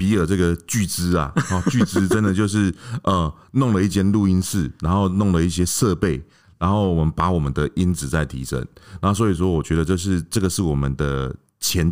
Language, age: Chinese, 30-49